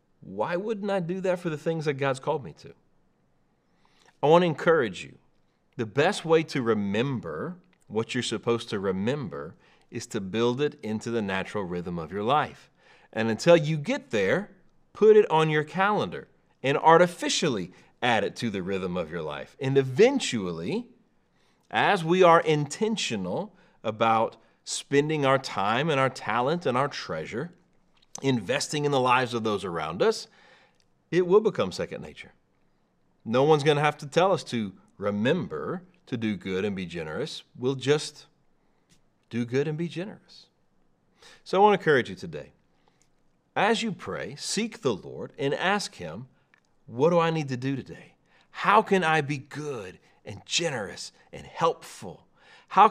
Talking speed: 160 wpm